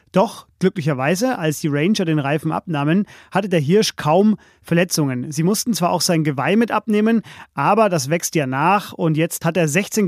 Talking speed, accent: 185 wpm, German